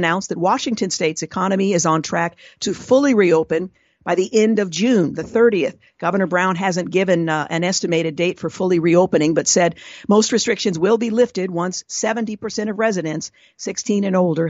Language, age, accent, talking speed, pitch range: English, 50-69, American, 180 wpm, 170-215 Hz